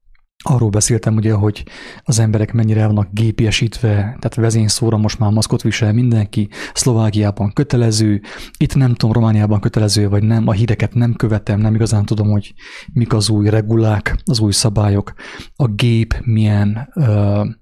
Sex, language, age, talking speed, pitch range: male, English, 30-49, 150 wpm, 105-120 Hz